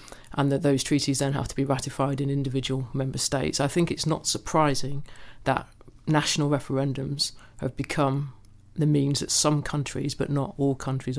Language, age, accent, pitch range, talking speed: English, 40-59, British, 130-145 Hz, 170 wpm